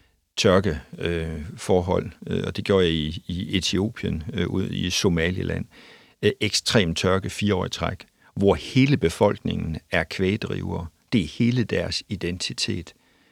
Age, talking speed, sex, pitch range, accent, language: 60-79, 115 wpm, male, 90-105 Hz, native, Danish